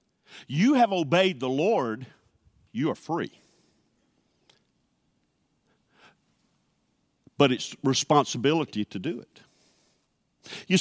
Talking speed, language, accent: 85 wpm, English, American